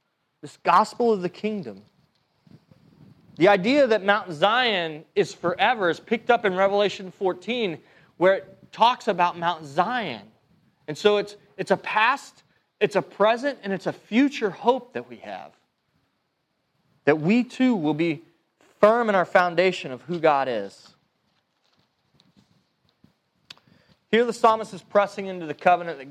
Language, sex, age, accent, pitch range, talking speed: English, male, 30-49, American, 160-220 Hz, 145 wpm